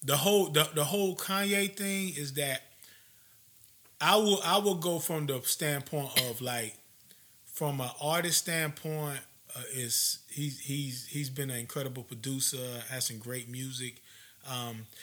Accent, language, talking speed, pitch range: American, English, 150 wpm, 115-150 Hz